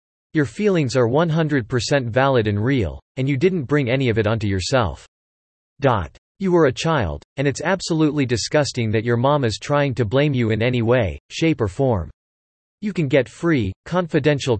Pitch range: 110-150 Hz